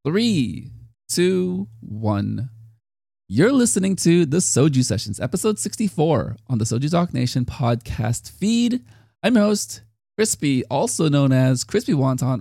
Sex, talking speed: male, 130 wpm